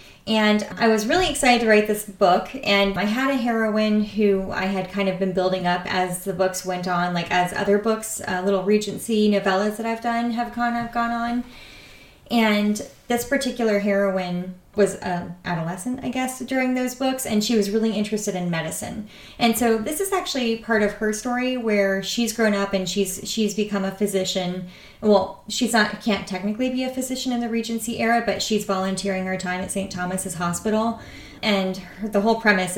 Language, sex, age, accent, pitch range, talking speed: English, female, 30-49, American, 185-230 Hz, 200 wpm